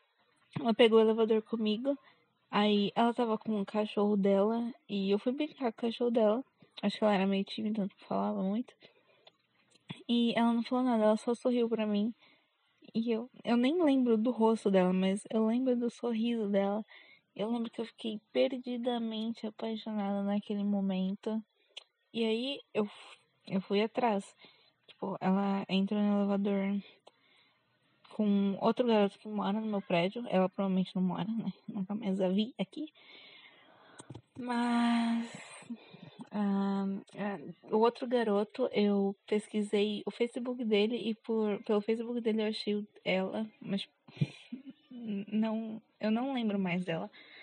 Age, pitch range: 10-29, 200-235 Hz